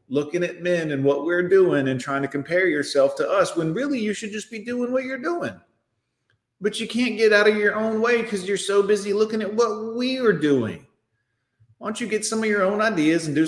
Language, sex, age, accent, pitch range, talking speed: English, male, 40-59, American, 130-205 Hz, 240 wpm